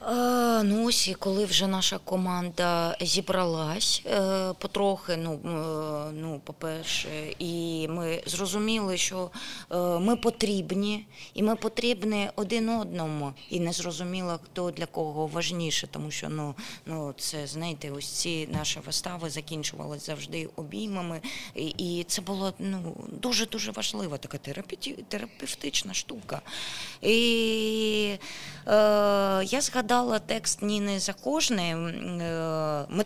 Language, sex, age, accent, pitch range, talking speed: Ukrainian, female, 20-39, native, 165-205 Hz, 110 wpm